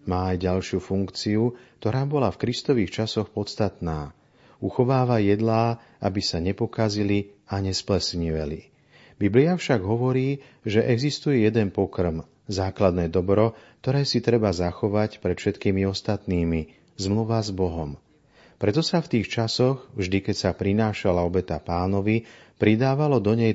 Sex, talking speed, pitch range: male, 125 wpm, 95-115 Hz